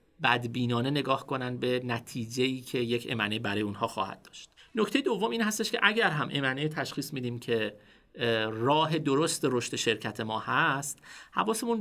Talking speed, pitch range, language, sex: 150 wpm, 115-150 Hz, Persian, male